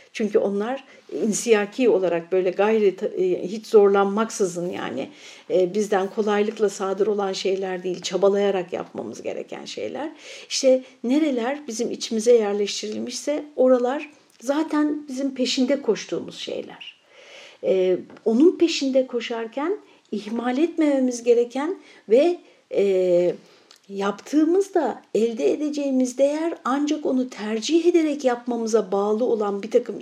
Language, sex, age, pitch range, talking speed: Turkish, female, 60-79, 205-280 Hz, 100 wpm